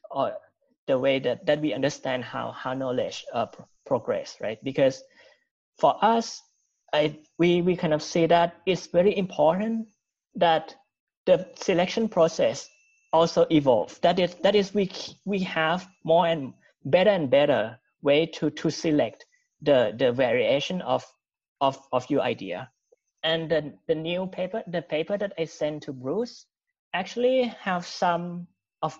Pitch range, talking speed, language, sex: 155-200 Hz, 150 wpm, English, male